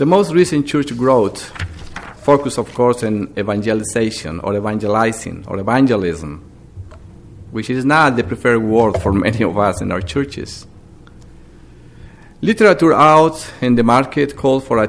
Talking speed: 140 wpm